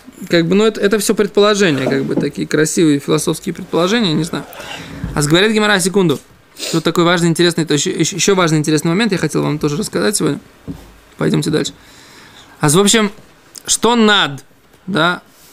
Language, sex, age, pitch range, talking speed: Russian, male, 20-39, 155-205 Hz, 160 wpm